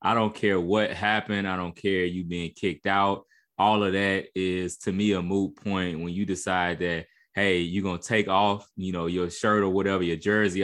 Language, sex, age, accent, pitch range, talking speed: English, male, 20-39, American, 90-105 Hz, 220 wpm